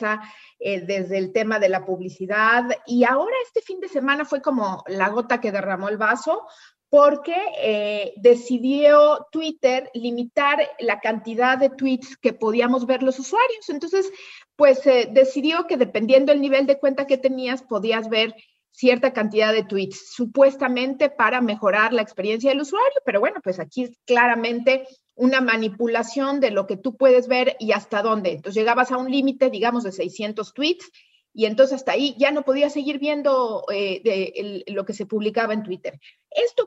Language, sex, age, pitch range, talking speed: Spanish, female, 40-59, 215-275 Hz, 170 wpm